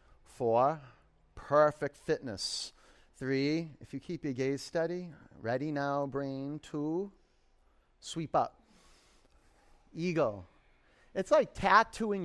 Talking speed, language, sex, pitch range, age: 100 wpm, English, male, 110-160 Hz, 40-59